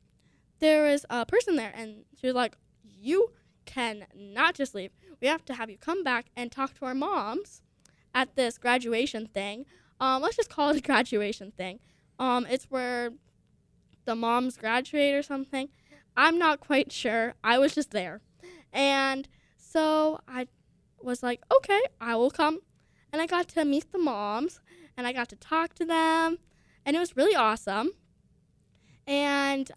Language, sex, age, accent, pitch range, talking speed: English, female, 10-29, American, 235-315 Hz, 165 wpm